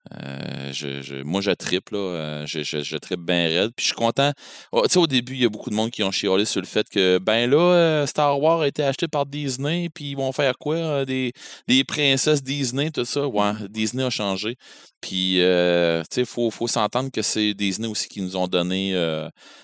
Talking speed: 230 wpm